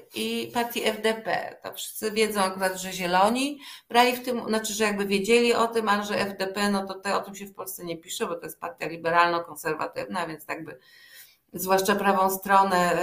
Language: Polish